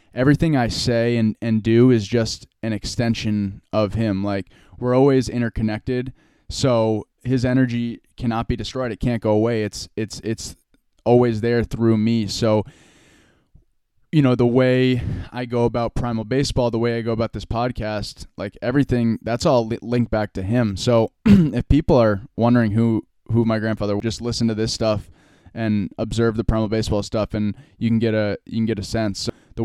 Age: 20-39